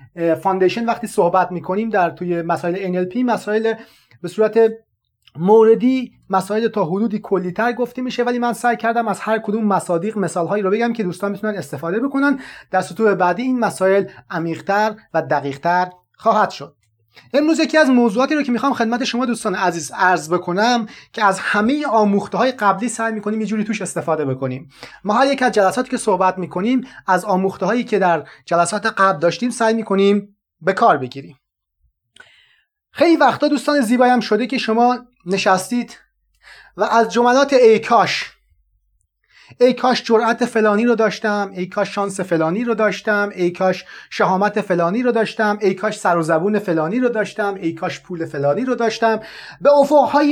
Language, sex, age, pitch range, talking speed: Persian, male, 30-49, 180-235 Hz, 160 wpm